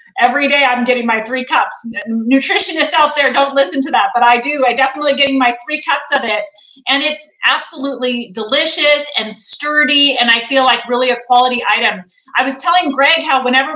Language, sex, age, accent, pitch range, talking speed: English, female, 30-49, American, 250-295 Hz, 195 wpm